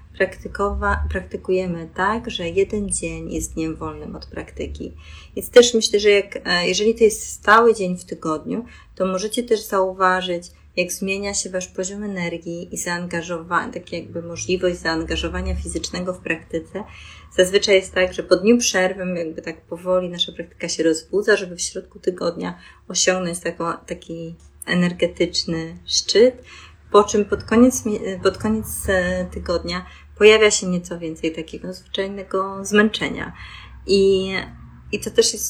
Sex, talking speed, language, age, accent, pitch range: female, 140 wpm, Polish, 30-49, native, 170-205 Hz